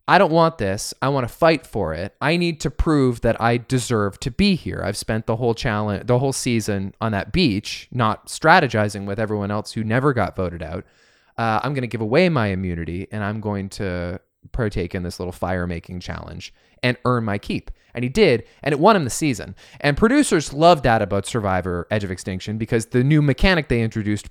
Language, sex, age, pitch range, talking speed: English, male, 20-39, 100-145 Hz, 215 wpm